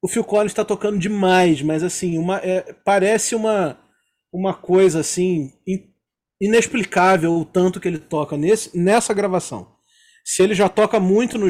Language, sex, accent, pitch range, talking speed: Portuguese, male, Brazilian, 155-210 Hz, 160 wpm